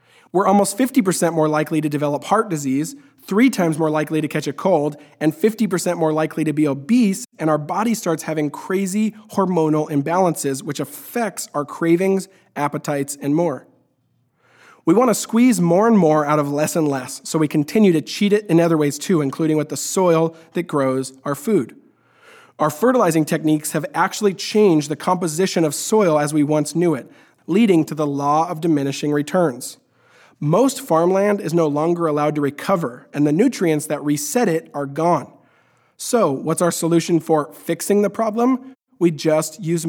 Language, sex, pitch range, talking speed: English, male, 150-190 Hz, 180 wpm